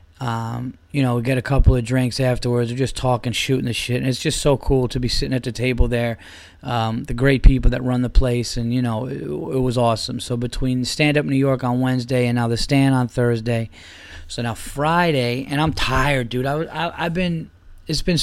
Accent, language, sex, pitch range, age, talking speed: American, English, male, 120-140 Hz, 20-39, 225 wpm